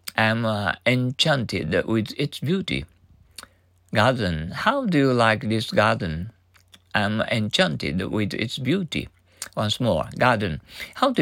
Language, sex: Japanese, male